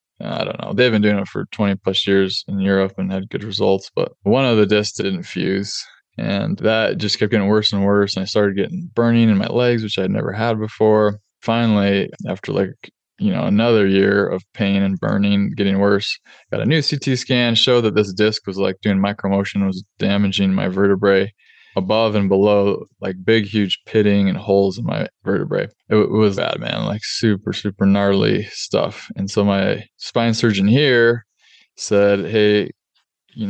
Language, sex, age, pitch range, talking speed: English, male, 20-39, 100-115 Hz, 190 wpm